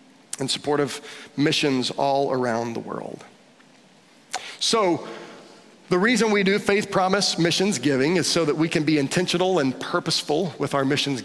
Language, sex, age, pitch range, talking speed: English, male, 40-59, 165-205 Hz, 155 wpm